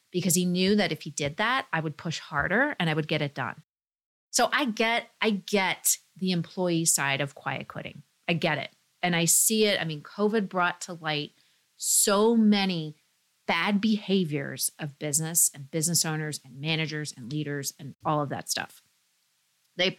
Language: English